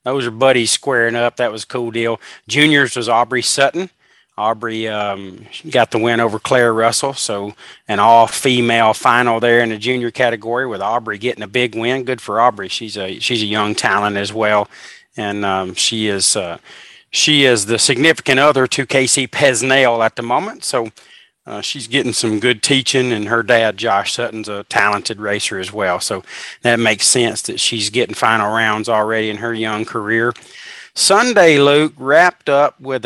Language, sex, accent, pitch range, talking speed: English, male, American, 110-130 Hz, 180 wpm